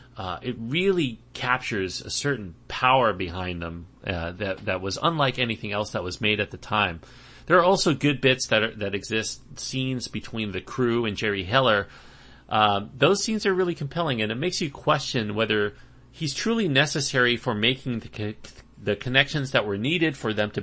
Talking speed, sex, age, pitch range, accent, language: 190 wpm, male, 30-49, 105-135 Hz, American, English